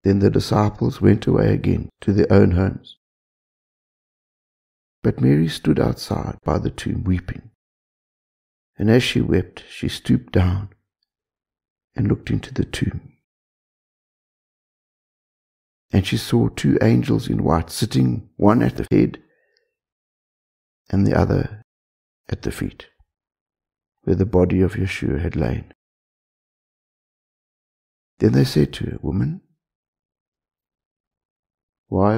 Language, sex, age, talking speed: English, male, 60-79, 115 wpm